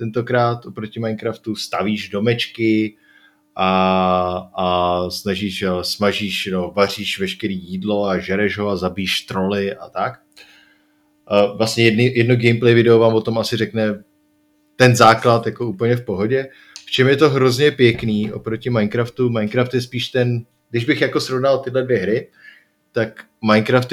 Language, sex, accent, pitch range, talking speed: Czech, male, native, 100-120 Hz, 135 wpm